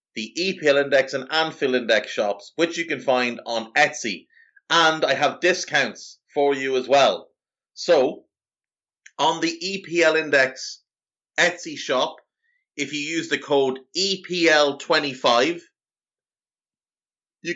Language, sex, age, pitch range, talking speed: English, male, 30-49, 125-170 Hz, 120 wpm